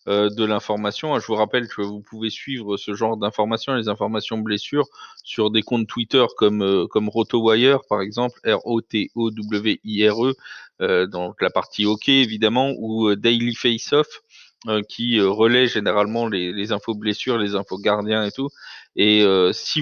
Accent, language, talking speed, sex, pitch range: French, French, 150 wpm, male, 105-125 Hz